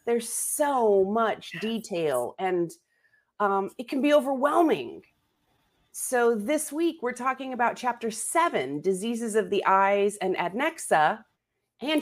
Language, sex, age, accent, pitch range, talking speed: English, female, 30-49, American, 190-275 Hz, 125 wpm